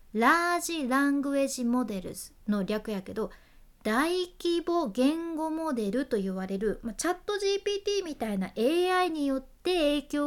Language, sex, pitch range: Japanese, female, 210-320 Hz